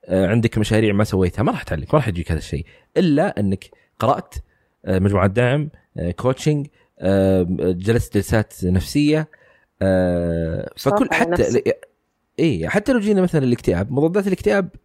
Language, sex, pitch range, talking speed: Arabic, male, 100-145 Hz, 125 wpm